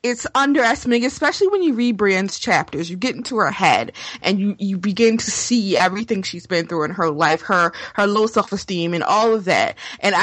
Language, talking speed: English, 205 wpm